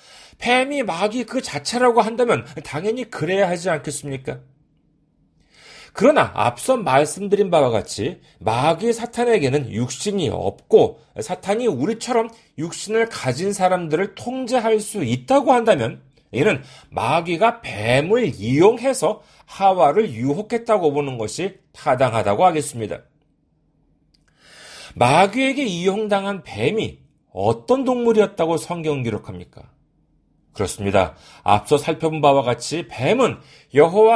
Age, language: 40-59, Korean